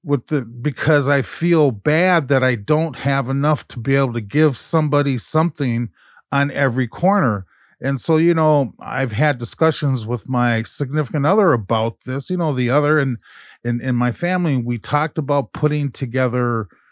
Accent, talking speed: American, 165 wpm